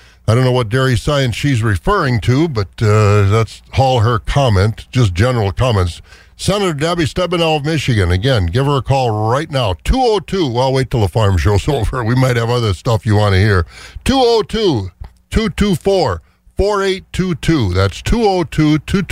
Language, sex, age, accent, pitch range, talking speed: English, male, 60-79, American, 100-140 Hz, 155 wpm